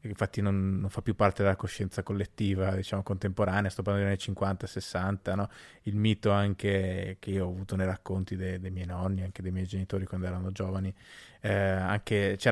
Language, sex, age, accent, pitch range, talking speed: Italian, male, 20-39, native, 95-110 Hz, 190 wpm